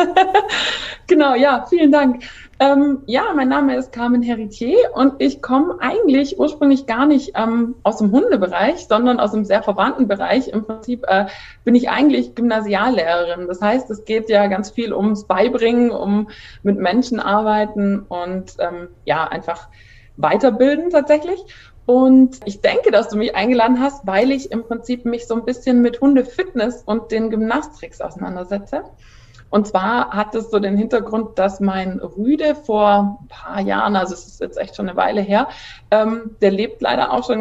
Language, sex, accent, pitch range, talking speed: German, female, German, 205-260 Hz, 170 wpm